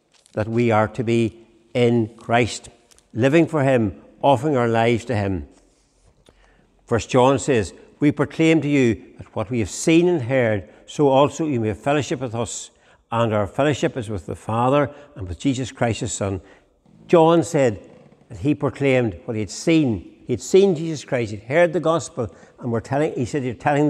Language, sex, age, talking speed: English, male, 60-79, 190 wpm